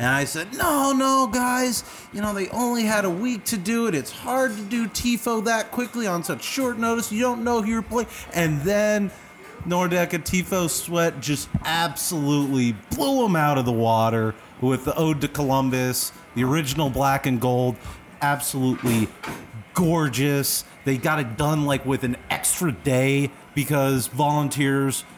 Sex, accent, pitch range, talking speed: male, American, 125-165 Hz, 165 wpm